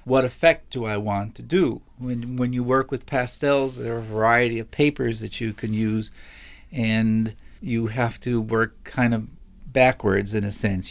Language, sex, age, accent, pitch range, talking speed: English, male, 40-59, American, 110-125 Hz, 185 wpm